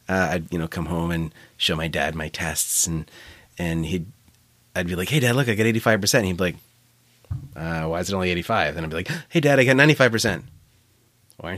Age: 30-49